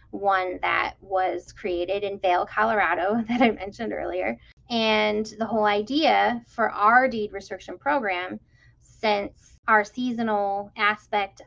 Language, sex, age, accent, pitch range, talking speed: English, female, 10-29, American, 190-220 Hz, 125 wpm